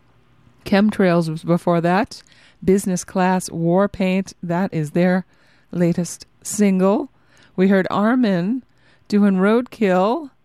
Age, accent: 30-49, American